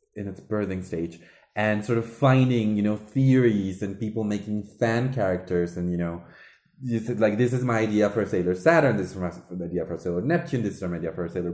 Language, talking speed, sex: English, 235 wpm, male